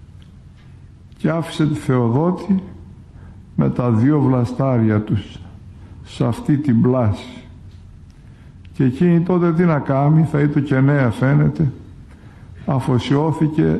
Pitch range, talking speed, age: 95-140 Hz, 110 wpm, 60-79